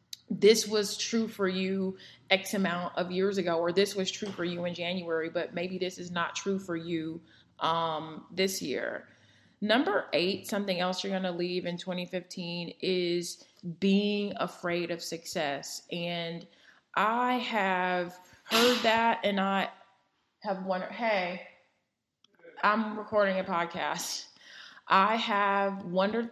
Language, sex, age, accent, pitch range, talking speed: English, female, 20-39, American, 175-200 Hz, 140 wpm